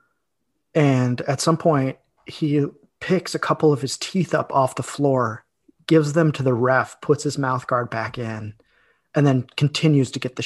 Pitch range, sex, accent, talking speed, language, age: 130-165 Hz, male, American, 185 wpm, English, 30-49